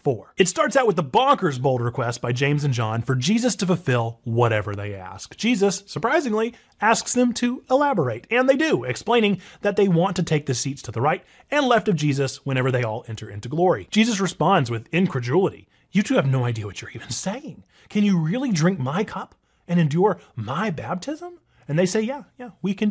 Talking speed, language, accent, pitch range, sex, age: 210 wpm, English, American, 130-210 Hz, male, 30-49